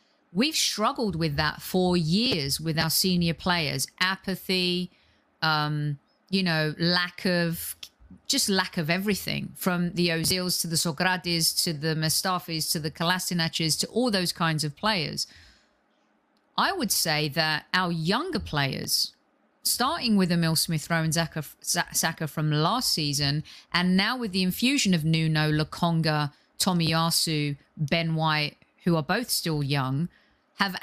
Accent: British